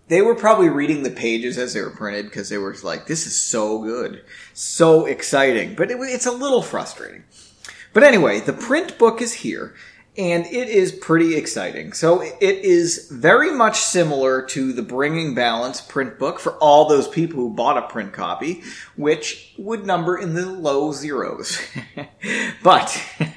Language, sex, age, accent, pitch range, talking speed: English, male, 30-49, American, 140-225 Hz, 170 wpm